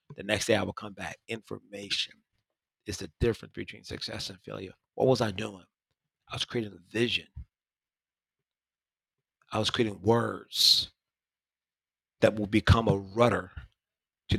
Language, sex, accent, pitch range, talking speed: English, male, American, 95-115 Hz, 140 wpm